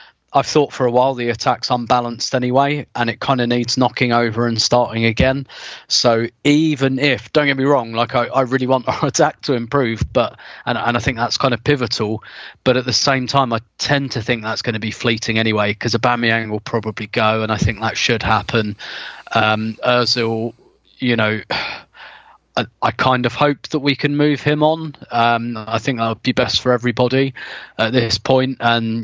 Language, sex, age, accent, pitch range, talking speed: English, male, 30-49, British, 115-130 Hz, 205 wpm